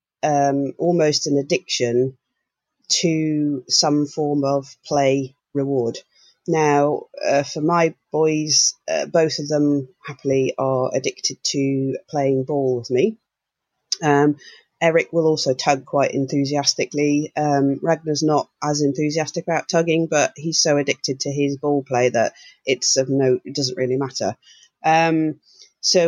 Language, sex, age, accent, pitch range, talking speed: English, female, 40-59, British, 140-170 Hz, 135 wpm